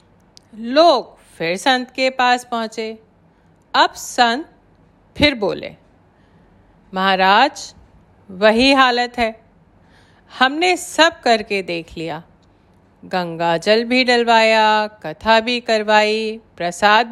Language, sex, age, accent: Hindi, female, 40-59, native